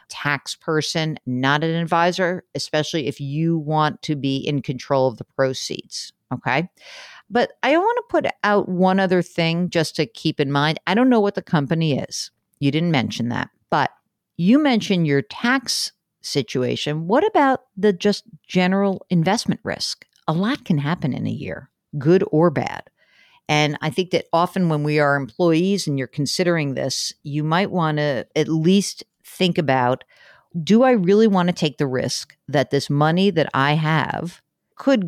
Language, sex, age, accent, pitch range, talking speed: English, female, 50-69, American, 140-190 Hz, 175 wpm